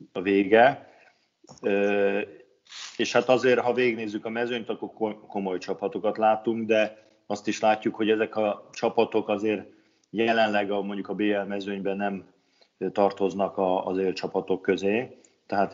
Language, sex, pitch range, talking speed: Hungarian, male, 100-110 Hz, 135 wpm